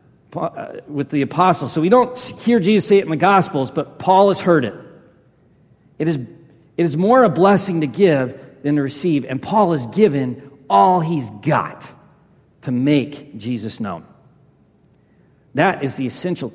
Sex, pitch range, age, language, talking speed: male, 145-210 Hz, 40-59, English, 165 wpm